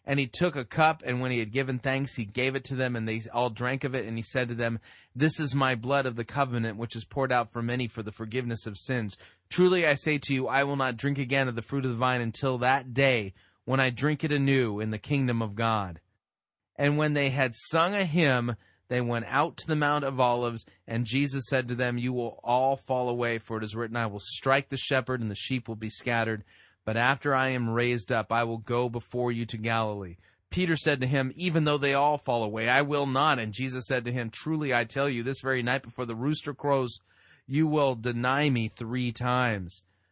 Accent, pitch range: American, 115-140 Hz